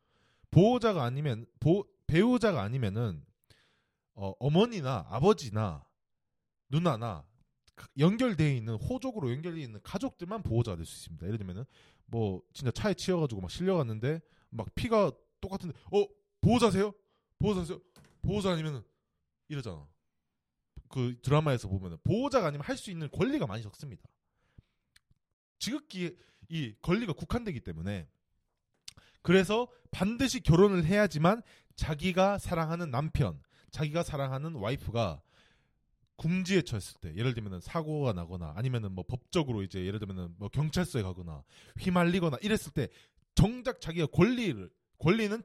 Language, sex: Korean, male